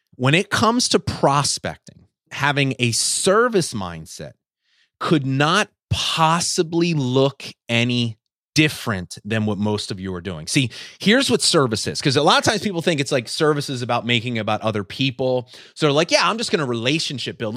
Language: English